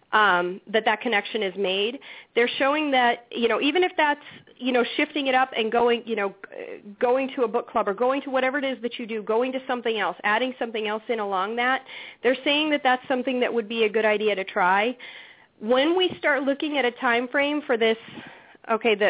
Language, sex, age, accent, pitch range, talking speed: English, female, 40-59, American, 220-275 Hz, 225 wpm